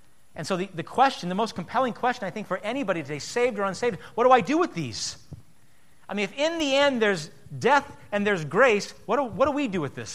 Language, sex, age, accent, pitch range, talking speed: English, male, 30-49, American, 145-245 Hz, 250 wpm